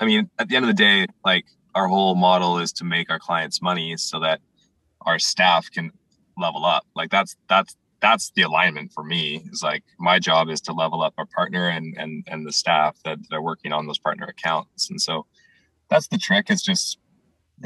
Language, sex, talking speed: English, male, 215 wpm